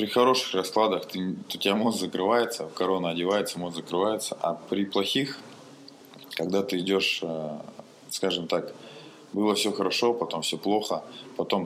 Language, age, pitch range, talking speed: Russian, 20-39, 90-110 Hz, 135 wpm